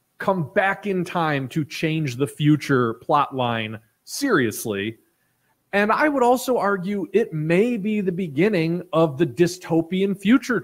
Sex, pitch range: male, 135-190 Hz